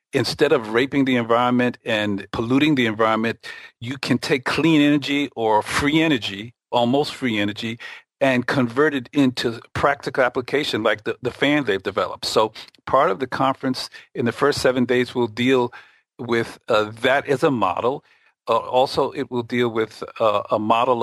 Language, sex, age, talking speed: English, male, 50-69, 165 wpm